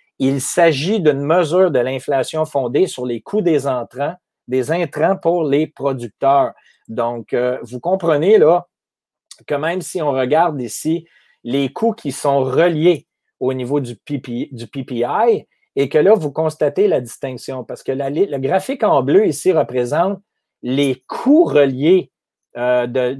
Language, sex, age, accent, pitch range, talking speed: French, male, 30-49, Canadian, 130-180 Hz, 145 wpm